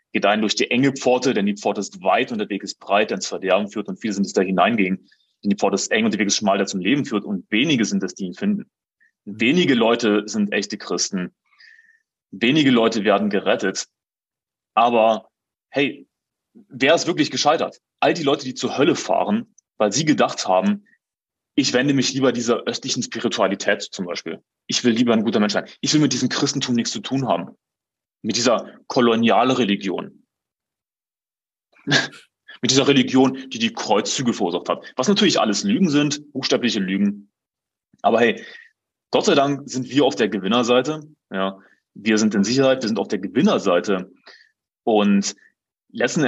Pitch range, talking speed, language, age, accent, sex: 105-140 Hz, 180 wpm, German, 30-49, German, male